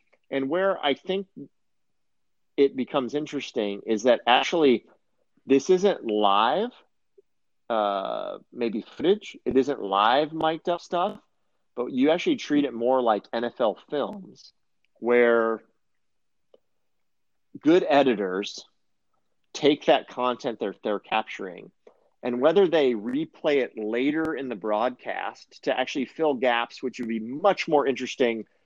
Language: English